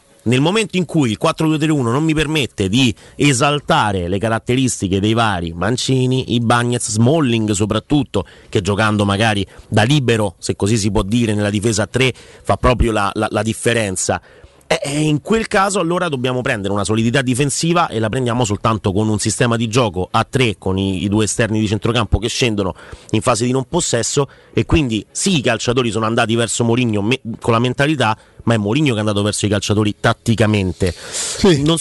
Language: Italian